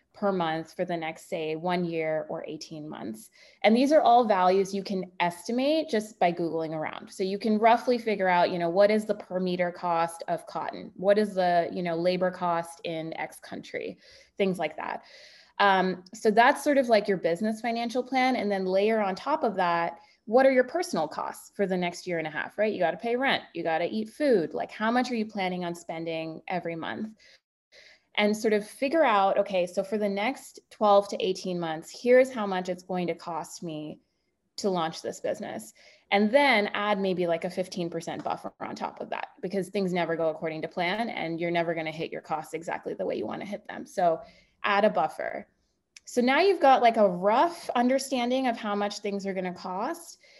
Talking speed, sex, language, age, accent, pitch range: 210 wpm, female, English, 20-39, American, 175-230 Hz